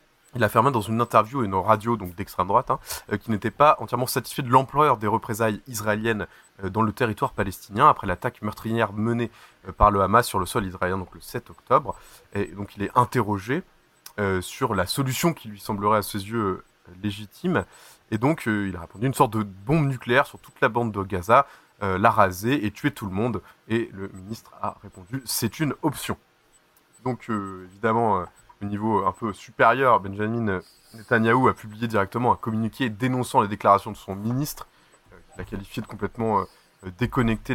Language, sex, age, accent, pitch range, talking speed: French, male, 20-39, French, 95-125 Hz, 190 wpm